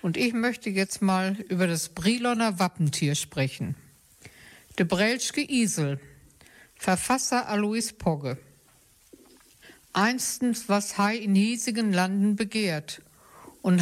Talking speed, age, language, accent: 105 wpm, 60-79, German, German